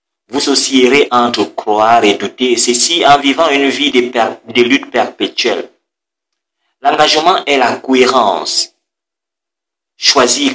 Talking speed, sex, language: 115 wpm, male, French